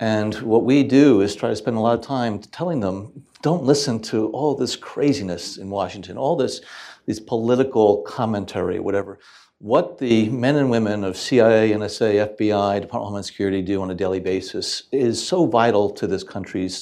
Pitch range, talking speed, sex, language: 105-130 Hz, 185 wpm, male, English